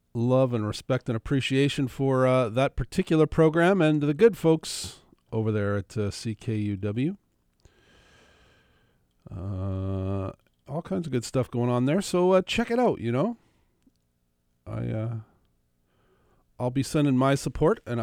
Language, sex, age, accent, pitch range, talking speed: English, male, 50-69, American, 95-135 Hz, 155 wpm